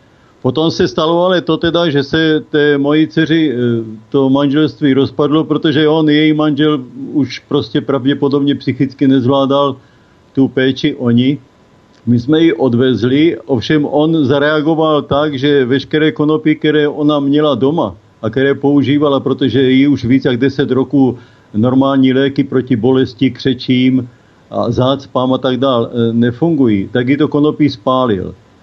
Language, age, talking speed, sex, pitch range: Slovak, 50-69, 140 wpm, male, 130-150 Hz